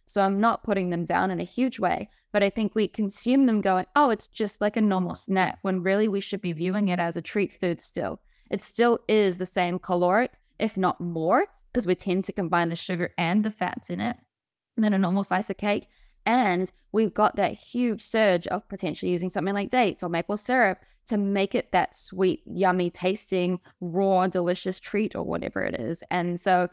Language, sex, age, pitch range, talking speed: English, female, 20-39, 180-220 Hz, 210 wpm